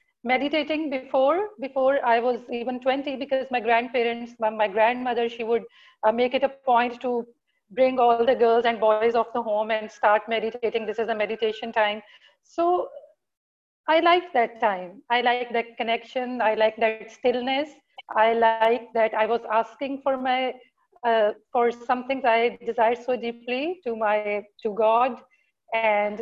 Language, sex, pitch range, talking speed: English, female, 220-265 Hz, 160 wpm